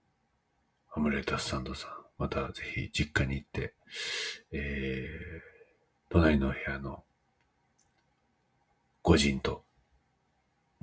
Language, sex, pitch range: Japanese, male, 75-120 Hz